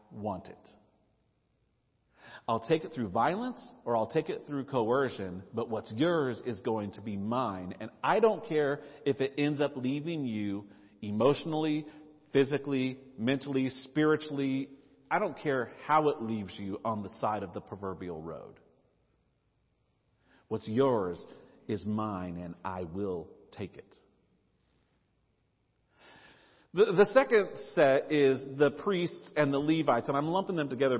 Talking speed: 140 wpm